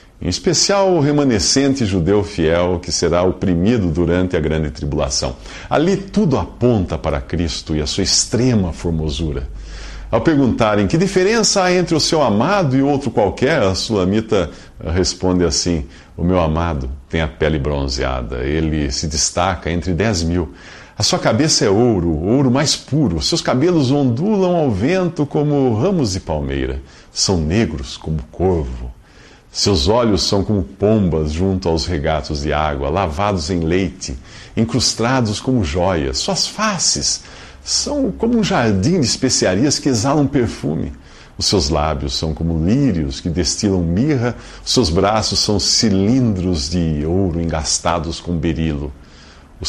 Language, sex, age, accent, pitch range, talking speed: Portuguese, male, 50-69, Brazilian, 80-115 Hz, 145 wpm